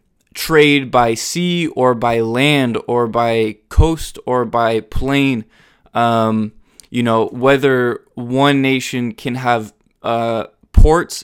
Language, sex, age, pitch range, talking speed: English, male, 20-39, 115-135 Hz, 115 wpm